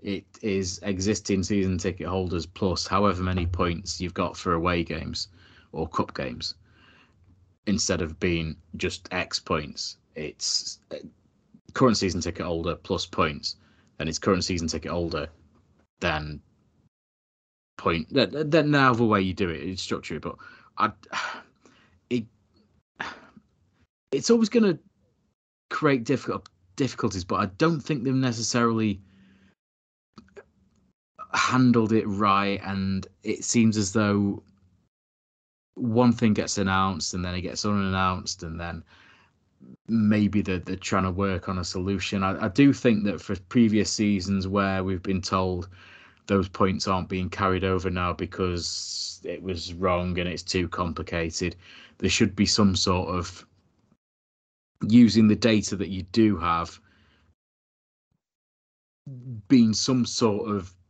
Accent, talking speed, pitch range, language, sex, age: British, 140 wpm, 90-105 Hz, English, male, 30-49